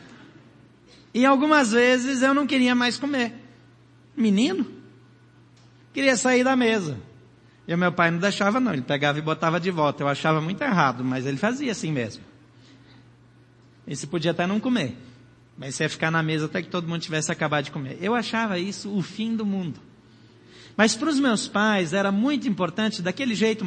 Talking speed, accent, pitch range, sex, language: 185 wpm, Brazilian, 155-235 Hz, male, Portuguese